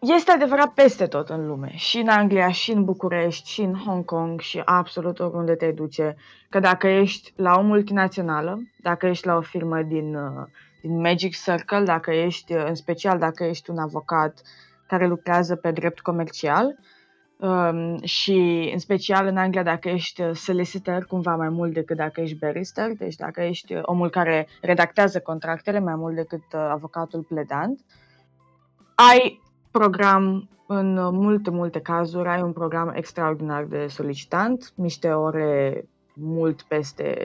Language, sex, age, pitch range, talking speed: Romanian, female, 20-39, 155-190 Hz, 150 wpm